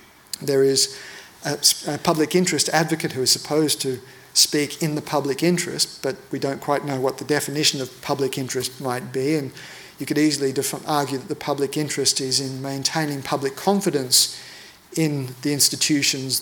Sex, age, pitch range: male, 50-69, 135-160 Hz